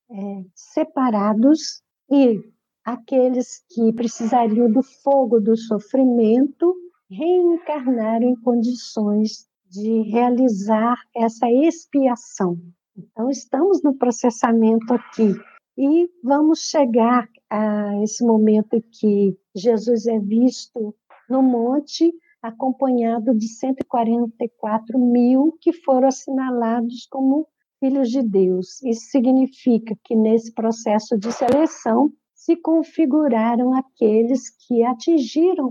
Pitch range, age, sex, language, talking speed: 225-275 Hz, 60-79, female, Portuguese, 95 wpm